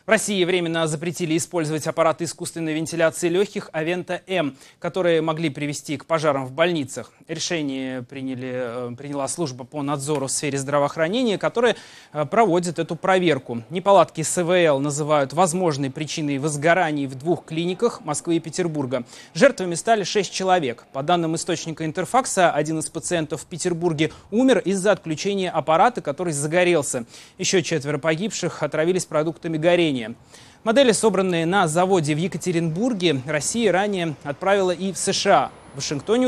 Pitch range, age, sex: 150-190 Hz, 20-39, male